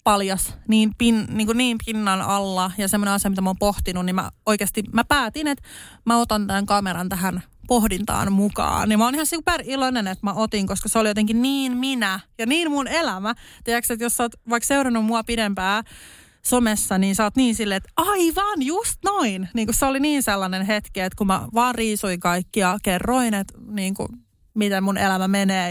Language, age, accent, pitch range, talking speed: Finnish, 20-39, native, 195-235 Hz, 205 wpm